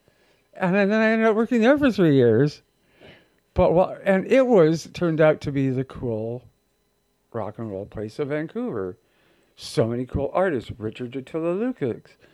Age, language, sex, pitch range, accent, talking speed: 50-69, English, male, 115-155 Hz, American, 165 wpm